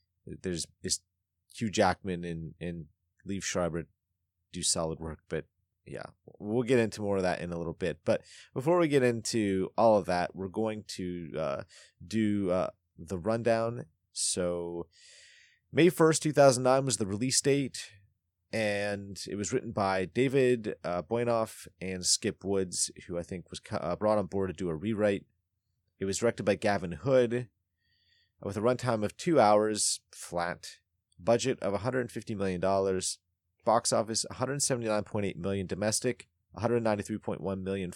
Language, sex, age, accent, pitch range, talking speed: English, male, 30-49, American, 90-110 Hz, 150 wpm